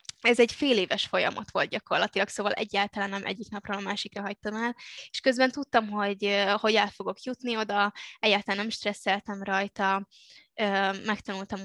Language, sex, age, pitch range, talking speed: Hungarian, female, 10-29, 195-220 Hz, 155 wpm